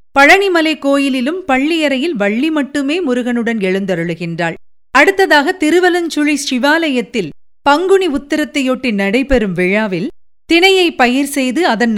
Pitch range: 195-310 Hz